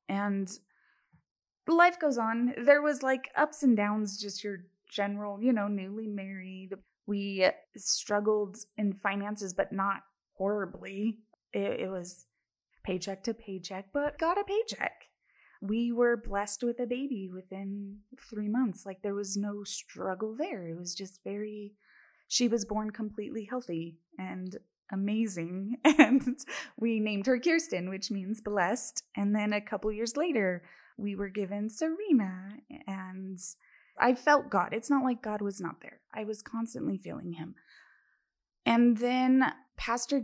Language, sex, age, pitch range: English, female, 20-39, 195-240 Hz